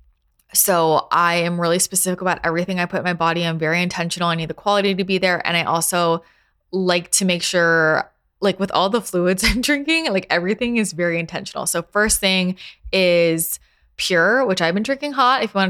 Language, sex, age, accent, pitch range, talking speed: English, female, 20-39, American, 160-195 Hz, 205 wpm